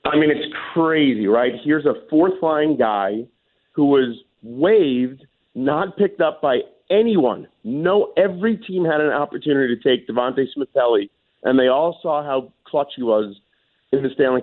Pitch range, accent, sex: 120-155 Hz, American, male